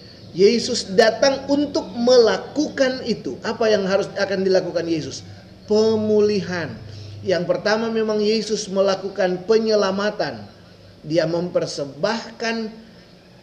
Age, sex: 30-49, male